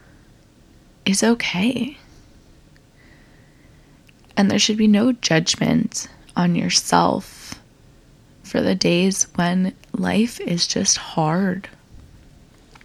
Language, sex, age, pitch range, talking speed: English, female, 20-39, 145-210 Hz, 85 wpm